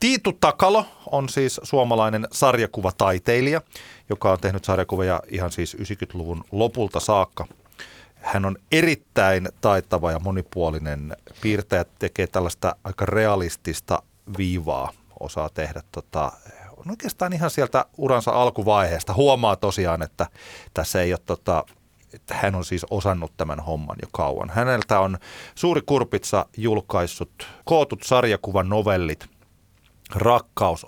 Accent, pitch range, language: native, 85-115 Hz, Finnish